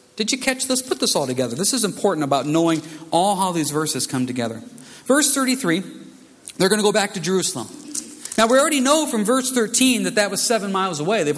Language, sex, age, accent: English, male, 40-59, American